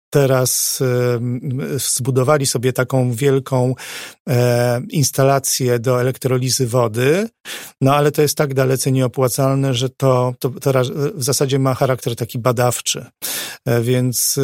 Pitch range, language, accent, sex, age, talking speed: 125-145 Hz, Polish, native, male, 40-59, 110 wpm